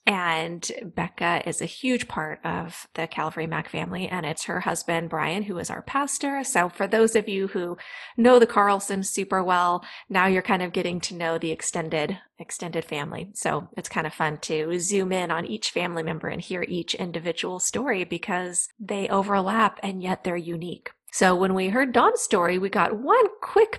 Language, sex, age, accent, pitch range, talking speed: English, female, 30-49, American, 175-235 Hz, 190 wpm